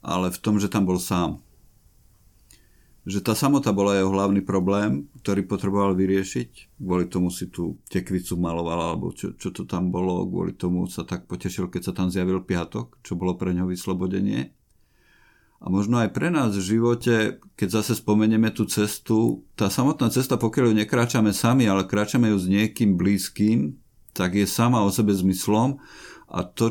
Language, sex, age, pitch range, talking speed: Slovak, male, 50-69, 90-110 Hz, 175 wpm